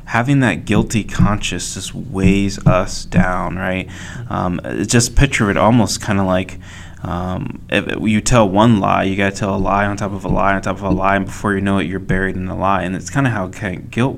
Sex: male